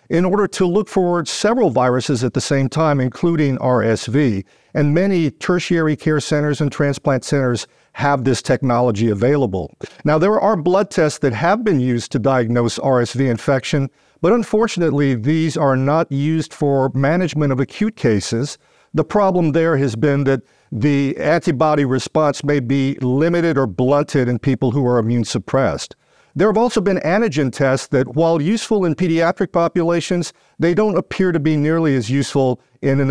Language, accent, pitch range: English, American, 130-165 Hz